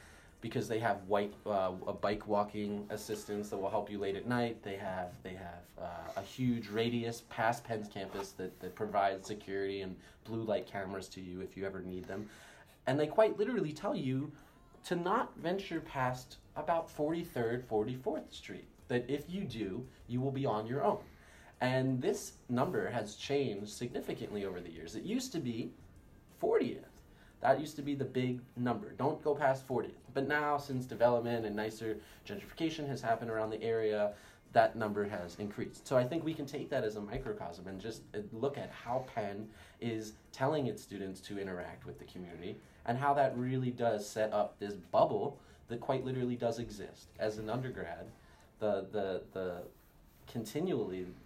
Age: 20-39